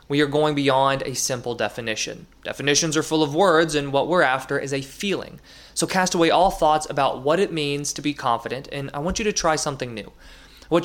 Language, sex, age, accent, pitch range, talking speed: English, male, 20-39, American, 135-165 Hz, 220 wpm